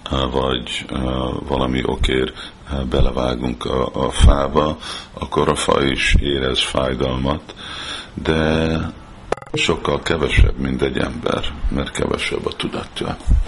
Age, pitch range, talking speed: 50-69, 65-75 Hz, 110 wpm